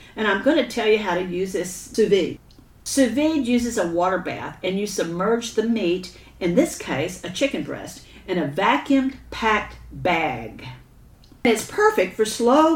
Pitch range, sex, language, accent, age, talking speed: 165-230 Hz, female, English, American, 50-69, 180 wpm